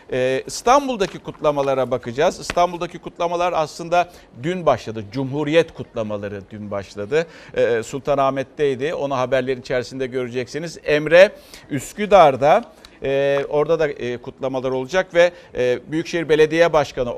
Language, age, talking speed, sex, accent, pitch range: Turkish, 60-79, 95 wpm, male, native, 120-155 Hz